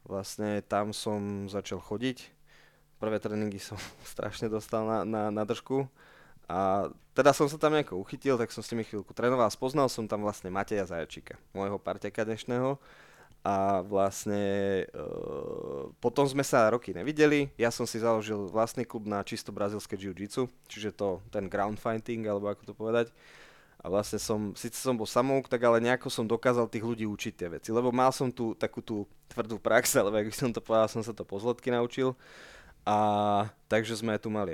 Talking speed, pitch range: 180 wpm, 105-125 Hz